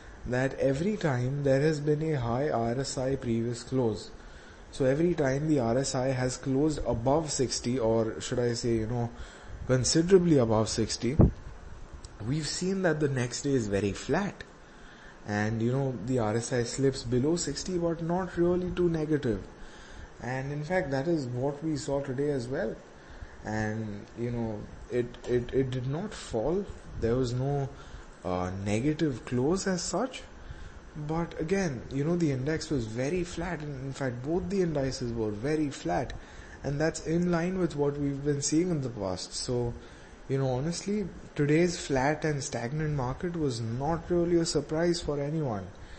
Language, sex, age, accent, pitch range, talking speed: English, male, 20-39, Indian, 115-155 Hz, 165 wpm